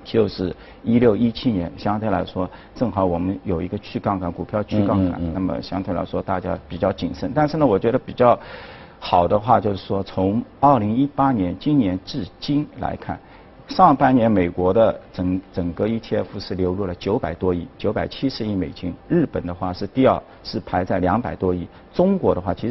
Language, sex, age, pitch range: Chinese, male, 50-69, 95-135 Hz